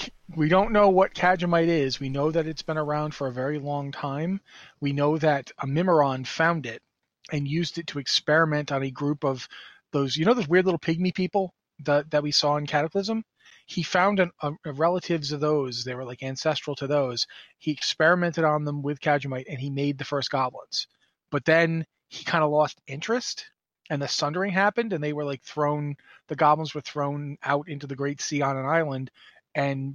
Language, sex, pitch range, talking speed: English, male, 140-160 Hz, 205 wpm